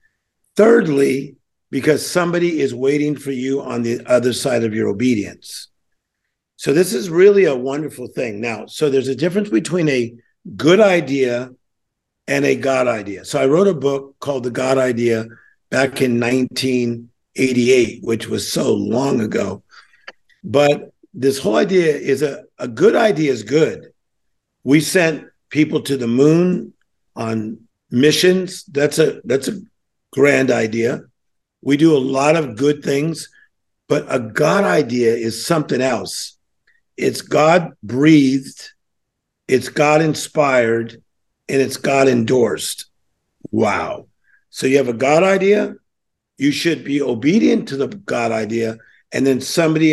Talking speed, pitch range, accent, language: 140 wpm, 120-155 Hz, American, English